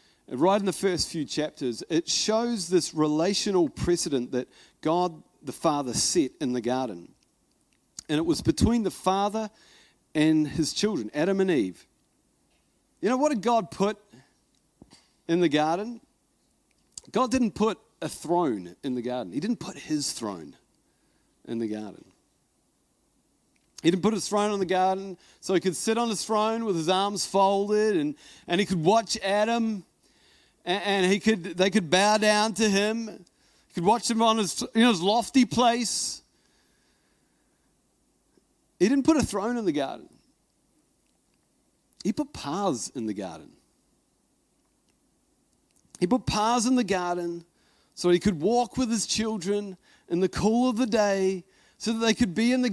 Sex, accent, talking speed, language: male, Australian, 160 wpm, English